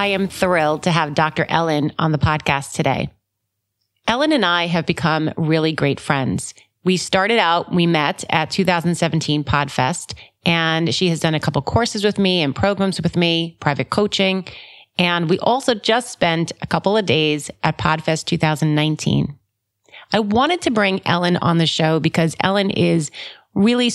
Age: 30-49